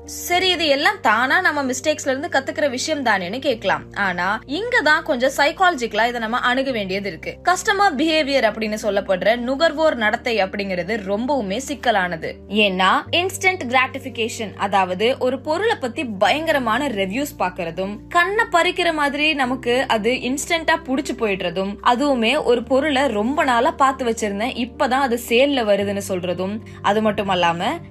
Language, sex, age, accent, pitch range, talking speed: Tamil, female, 20-39, native, 210-285 Hz, 95 wpm